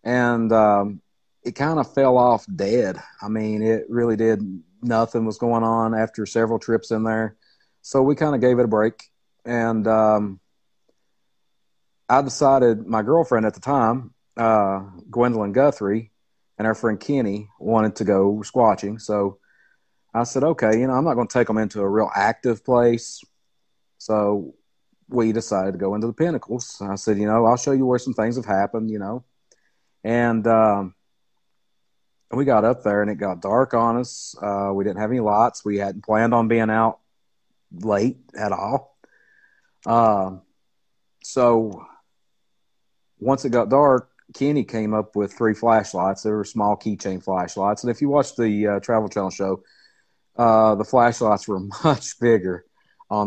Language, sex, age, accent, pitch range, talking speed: English, male, 40-59, American, 105-120 Hz, 170 wpm